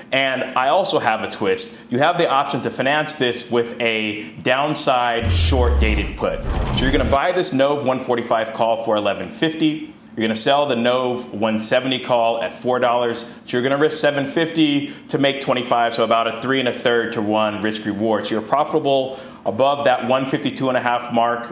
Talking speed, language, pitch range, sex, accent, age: 185 wpm, English, 110-135 Hz, male, American, 30-49